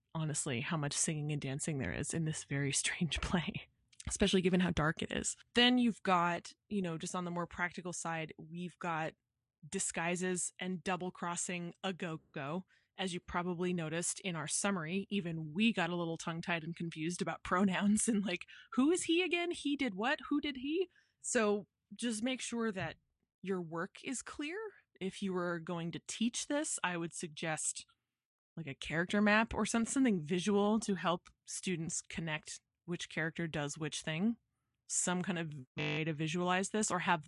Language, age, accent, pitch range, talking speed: English, 20-39, American, 165-205 Hz, 180 wpm